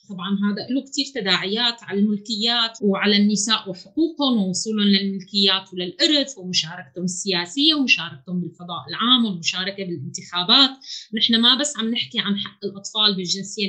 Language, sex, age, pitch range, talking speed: Arabic, female, 20-39, 195-240 Hz, 125 wpm